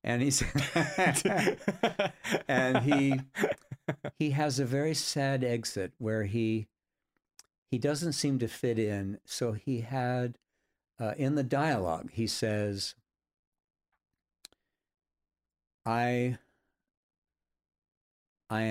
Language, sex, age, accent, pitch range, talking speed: English, male, 60-79, American, 100-145 Hz, 95 wpm